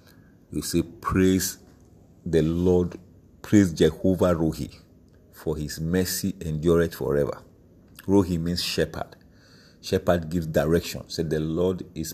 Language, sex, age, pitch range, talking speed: English, male, 50-69, 80-95 Hz, 115 wpm